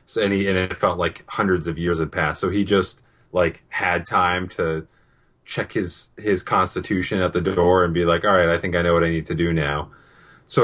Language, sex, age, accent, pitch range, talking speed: English, male, 30-49, American, 85-100 Hz, 235 wpm